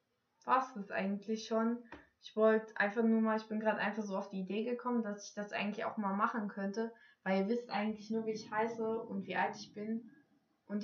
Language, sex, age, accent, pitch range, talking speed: German, female, 20-39, German, 200-245 Hz, 220 wpm